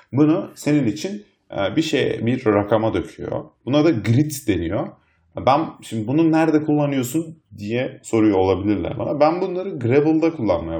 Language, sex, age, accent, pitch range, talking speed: Turkish, male, 30-49, native, 100-150 Hz, 140 wpm